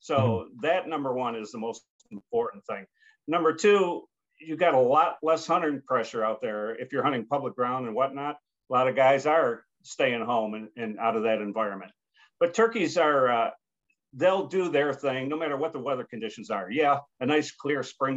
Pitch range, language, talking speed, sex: 115-145 Hz, English, 200 wpm, male